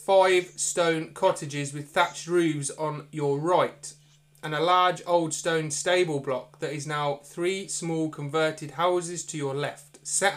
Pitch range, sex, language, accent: 150-185 Hz, male, English, British